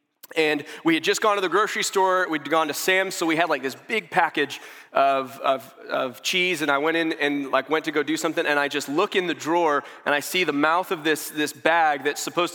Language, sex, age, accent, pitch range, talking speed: English, male, 30-49, American, 140-170 Hz, 255 wpm